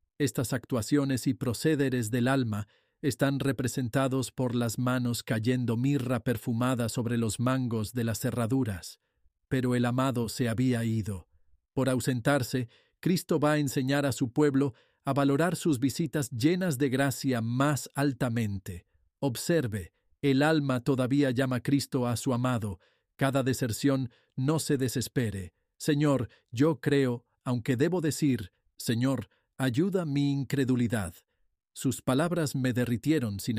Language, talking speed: Spanish, 130 wpm